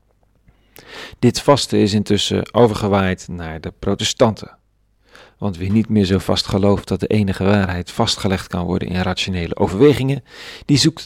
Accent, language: Dutch, Dutch